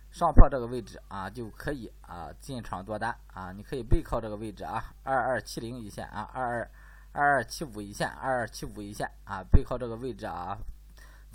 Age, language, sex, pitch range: 20-39, Chinese, male, 105-145 Hz